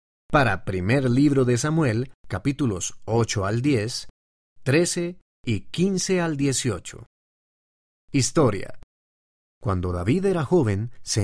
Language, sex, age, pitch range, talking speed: Spanish, male, 40-59, 100-145 Hz, 105 wpm